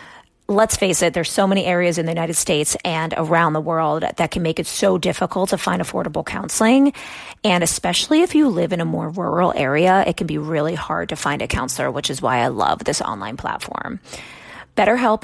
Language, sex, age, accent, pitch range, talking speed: English, female, 30-49, American, 165-215 Hz, 210 wpm